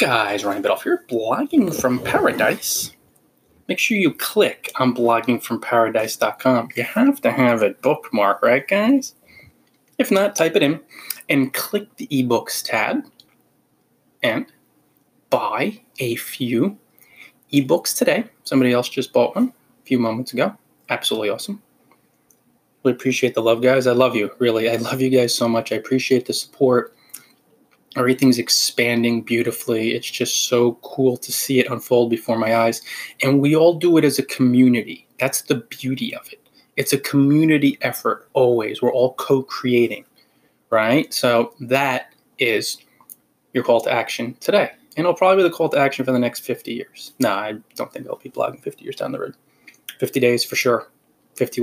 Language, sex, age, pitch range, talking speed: English, male, 20-39, 120-170 Hz, 165 wpm